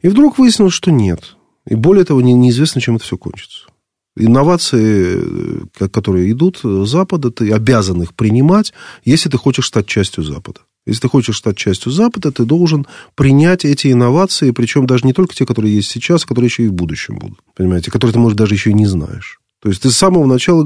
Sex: male